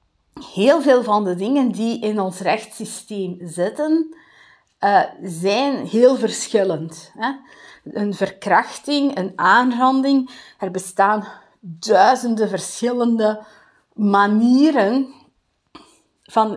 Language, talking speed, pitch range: Dutch, 85 wpm, 205-280 Hz